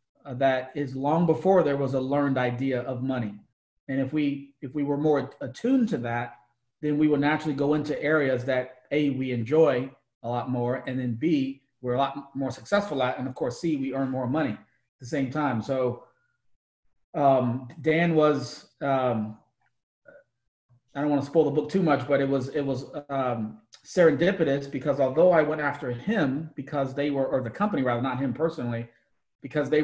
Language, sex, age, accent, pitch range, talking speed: English, male, 30-49, American, 125-150 Hz, 190 wpm